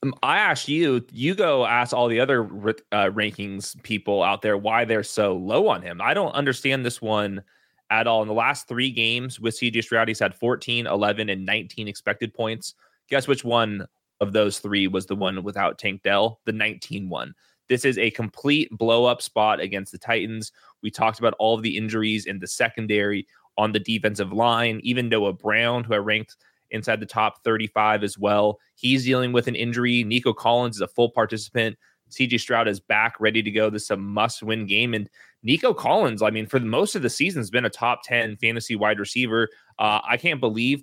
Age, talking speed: 20-39, 200 wpm